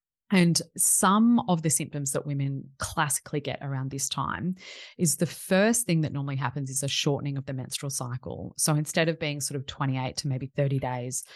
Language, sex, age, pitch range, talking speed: English, female, 20-39, 130-155 Hz, 195 wpm